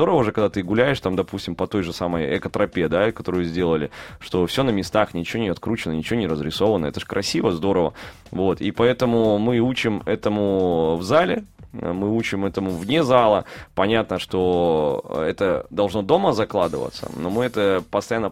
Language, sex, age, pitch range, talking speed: Russian, male, 20-39, 100-120 Hz, 165 wpm